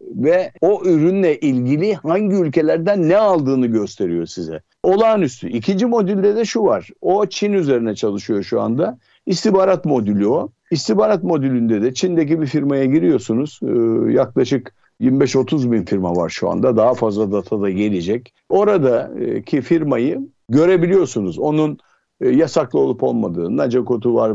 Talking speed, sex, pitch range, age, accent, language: 135 wpm, male, 120-185 Hz, 60-79, native, Turkish